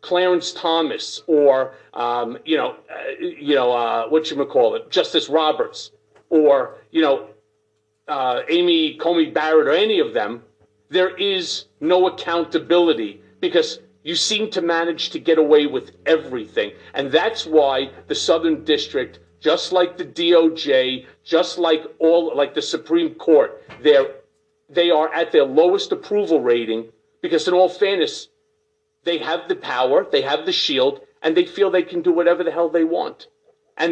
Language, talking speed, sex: English, 160 wpm, male